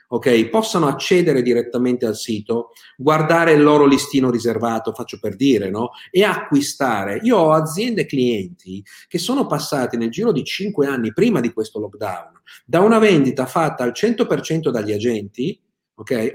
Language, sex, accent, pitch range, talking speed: Italian, male, native, 125-185 Hz, 160 wpm